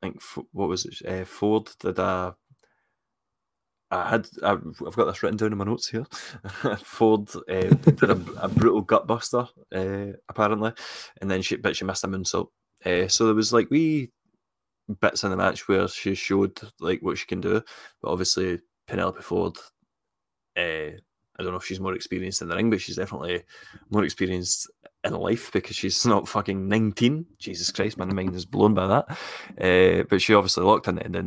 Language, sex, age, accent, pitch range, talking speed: English, male, 20-39, British, 90-110 Hz, 190 wpm